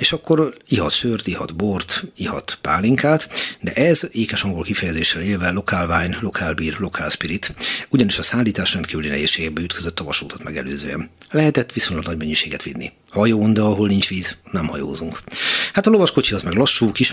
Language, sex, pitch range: Hungarian, male, 85-110 Hz